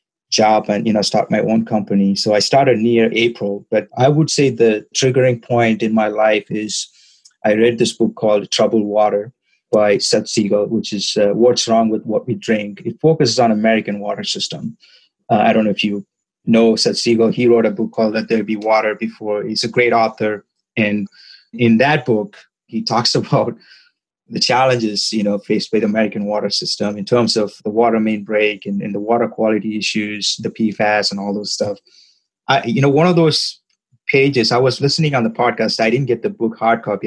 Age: 30-49